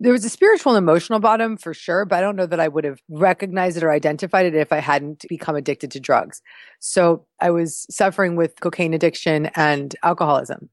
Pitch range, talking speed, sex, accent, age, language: 140-170 Hz, 215 wpm, female, American, 30-49, English